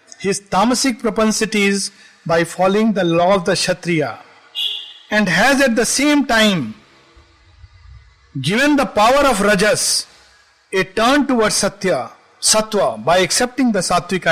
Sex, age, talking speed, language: male, 50-69, 125 wpm, Hindi